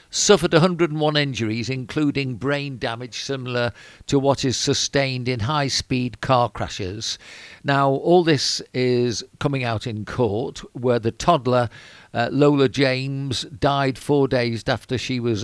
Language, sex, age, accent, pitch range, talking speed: English, male, 50-69, British, 115-140 Hz, 135 wpm